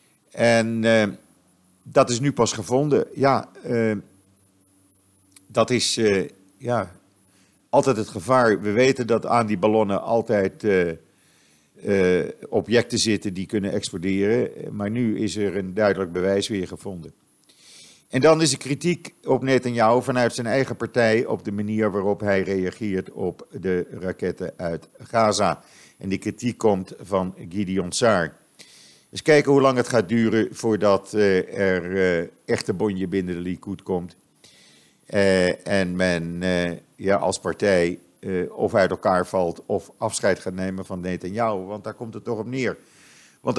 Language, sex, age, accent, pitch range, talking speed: Dutch, male, 50-69, Dutch, 95-115 Hz, 150 wpm